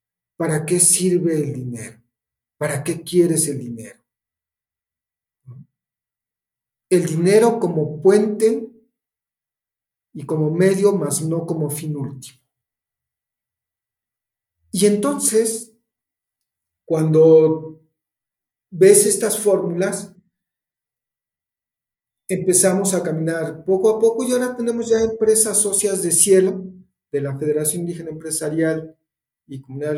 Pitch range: 140-185 Hz